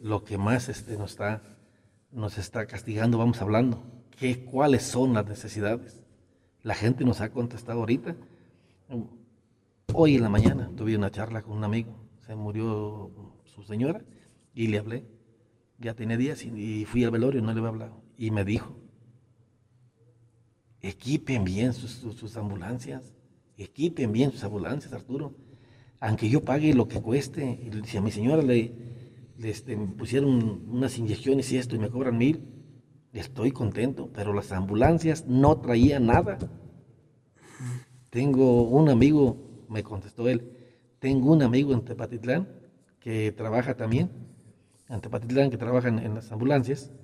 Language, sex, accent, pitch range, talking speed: Spanish, male, Mexican, 110-130 Hz, 150 wpm